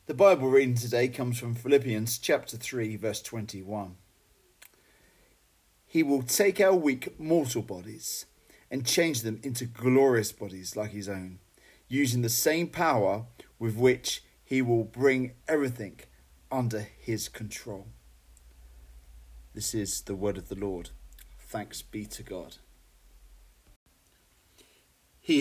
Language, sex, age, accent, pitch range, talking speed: English, male, 40-59, British, 105-155 Hz, 125 wpm